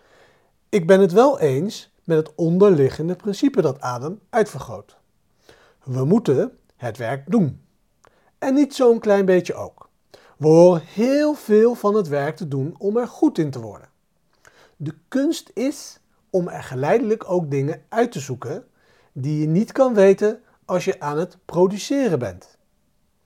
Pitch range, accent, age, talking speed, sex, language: 140-220 Hz, Dutch, 40-59, 155 wpm, male, Dutch